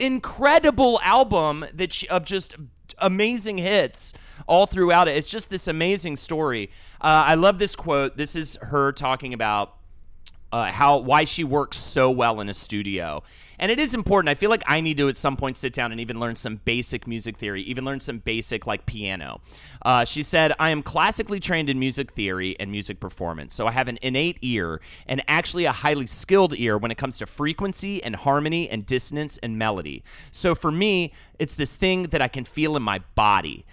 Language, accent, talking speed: English, American, 200 wpm